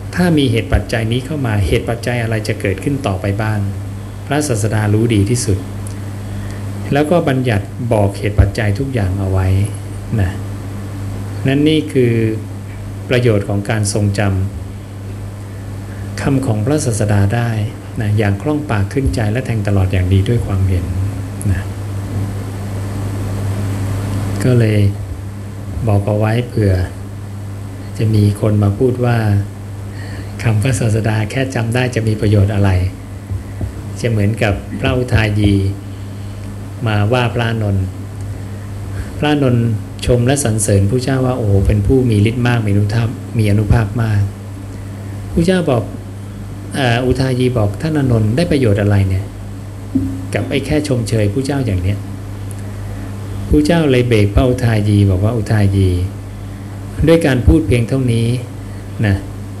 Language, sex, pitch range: English, male, 100-115 Hz